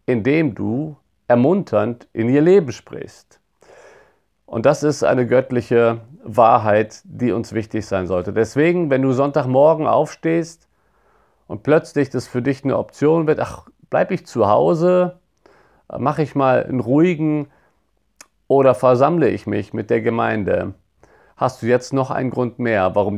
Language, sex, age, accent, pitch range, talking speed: German, male, 50-69, German, 105-140 Hz, 145 wpm